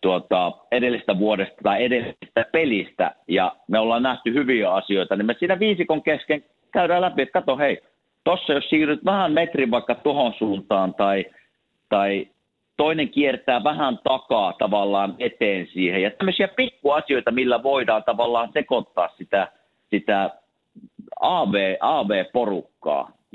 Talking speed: 130 wpm